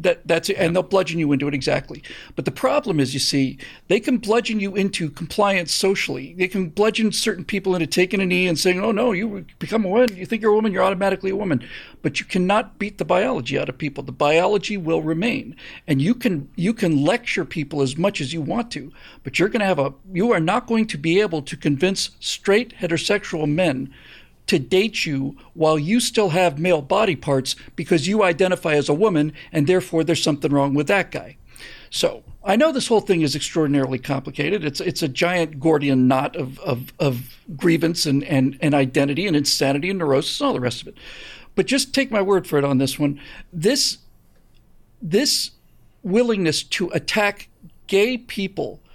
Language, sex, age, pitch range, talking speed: English, male, 50-69, 150-205 Hz, 205 wpm